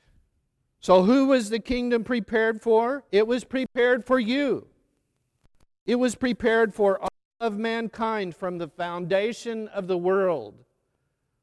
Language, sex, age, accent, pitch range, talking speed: English, male, 50-69, American, 160-215 Hz, 130 wpm